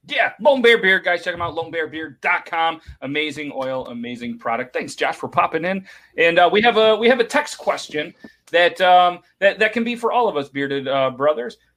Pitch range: 135-180 Hz